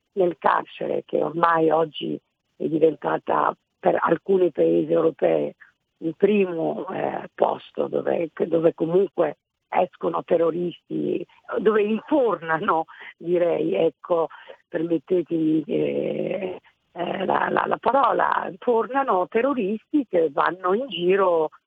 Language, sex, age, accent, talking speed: Italian, female, 50-69, native, 100 wpm